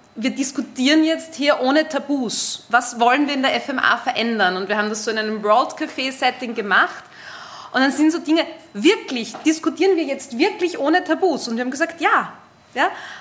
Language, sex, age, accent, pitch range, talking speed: German, female, 20-39, German, 240-315 Hz, 190 wpm